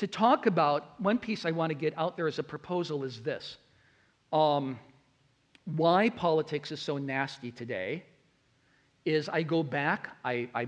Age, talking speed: 50-69, 165 wpm